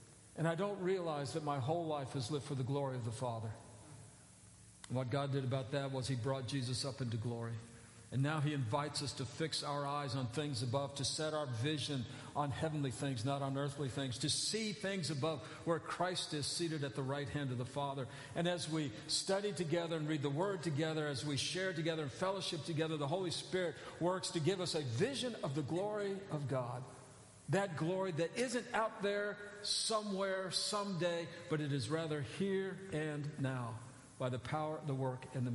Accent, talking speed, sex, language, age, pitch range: American, 200 wpm, male, English, 50-69, 135-170 Hz